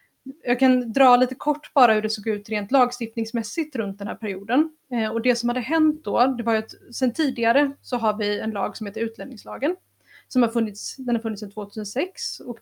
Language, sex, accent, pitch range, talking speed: Swedish, female, native, 215-255 Hz, 215 wpm